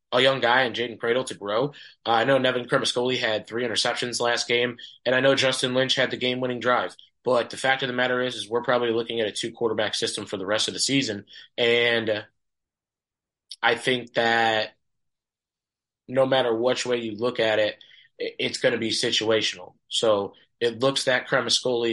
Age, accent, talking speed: 20-39, American, 195 wpm